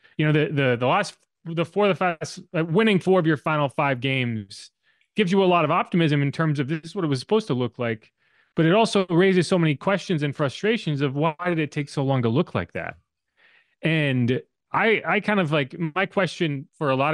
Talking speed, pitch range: 235 wpm, 130-185 Hz